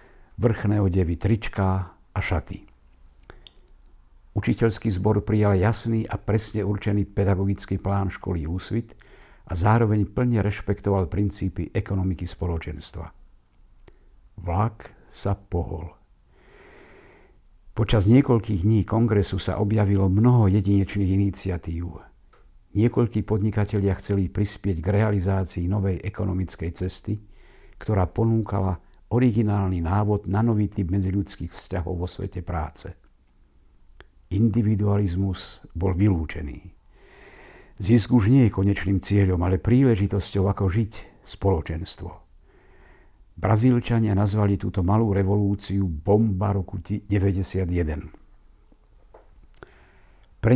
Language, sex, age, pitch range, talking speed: Slovak, male, 60-79, 90-105 Hz, 95 wpm